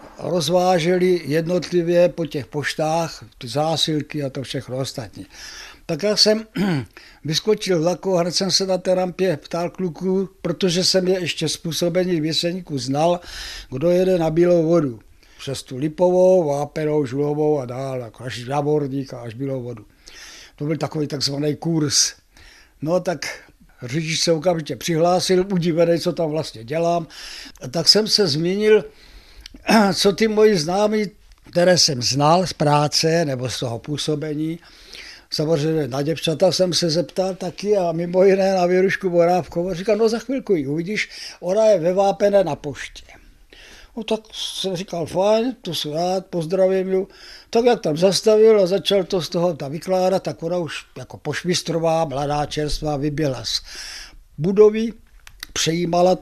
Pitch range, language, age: 150-185 Hz, Czech, 60-79